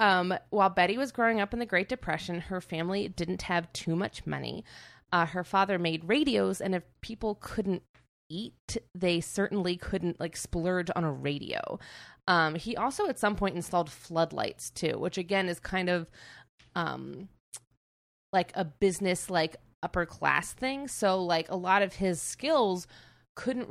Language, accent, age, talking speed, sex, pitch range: English, American, 20-39, 165 wpm, female, 165-200 Hz